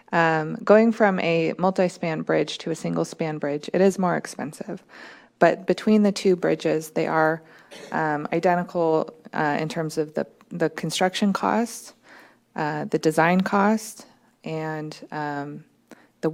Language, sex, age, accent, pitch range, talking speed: English, female, 20-39, American, 160-200 Hz, 145 wpm